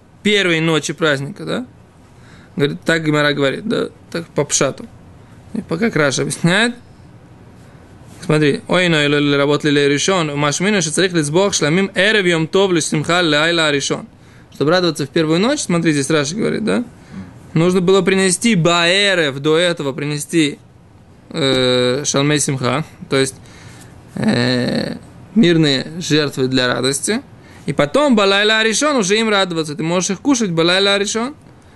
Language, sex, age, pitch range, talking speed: Russian, male, 20-39, 145-190 Hz, 120 wpm